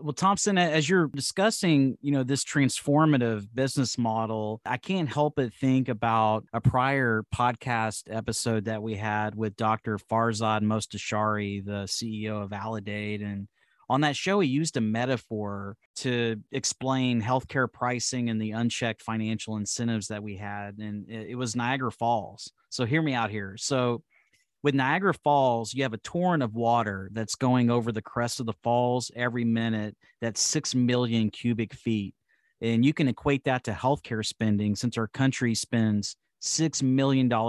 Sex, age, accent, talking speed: male, 30-49, American, 160 wpm